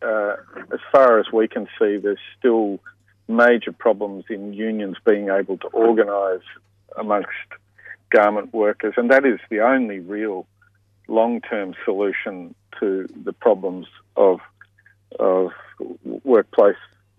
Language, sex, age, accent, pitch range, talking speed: English, male, 50-69, Australian, 100-125 Hz, 120 wpm